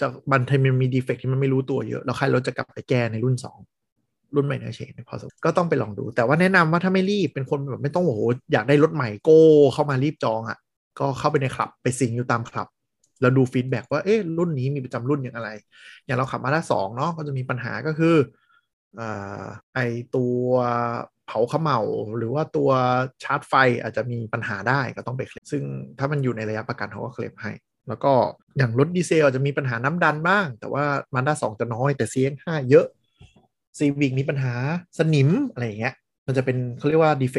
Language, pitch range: Thai, 120-145 Hz